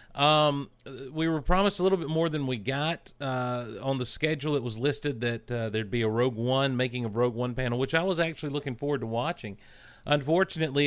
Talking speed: 215 wpm